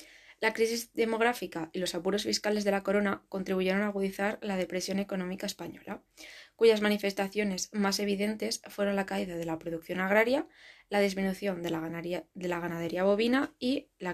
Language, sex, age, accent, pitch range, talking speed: Spanish, female, 20-39, Spanish, 185-215 Hz, 155 wpm